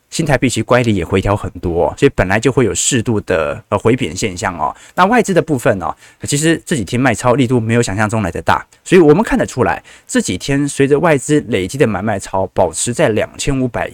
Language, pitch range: Chinese, 110-140 Hz